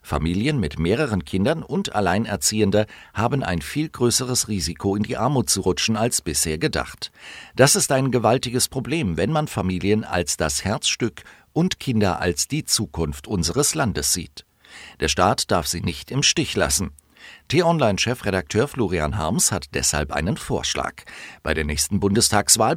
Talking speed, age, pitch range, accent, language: 150 wpm, 50-69, 80-120 Hz, German, German